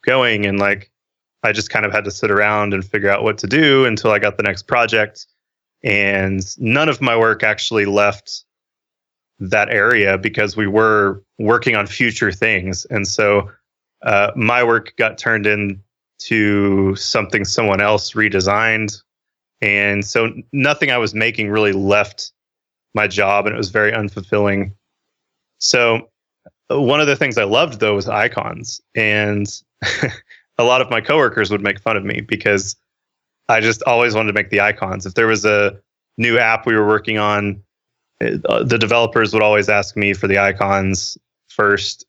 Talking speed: 165 wpm